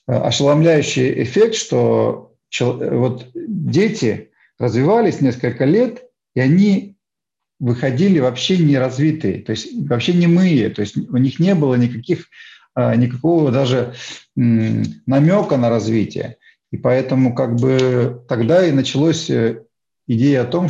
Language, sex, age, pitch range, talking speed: Russian, male, 50-69, 120-160 Hz, 115 wpm